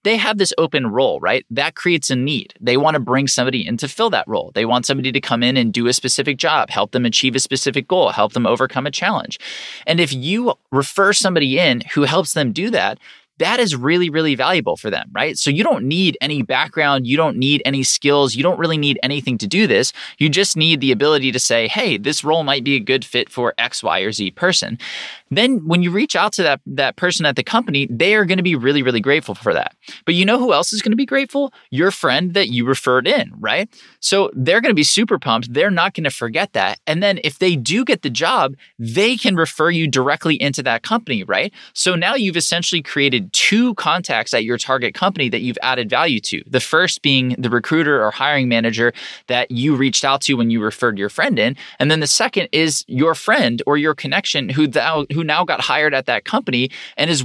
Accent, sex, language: American, male, English